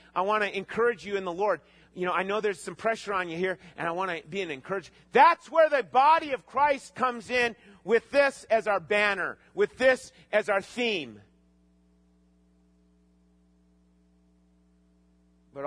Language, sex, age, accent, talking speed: English, male, 40-59, American, 170 wpm